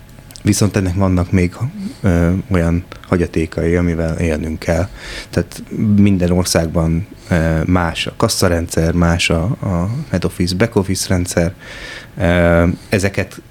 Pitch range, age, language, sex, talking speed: 90-105 Hz, 30-49, Hungarian, male, 105 wpm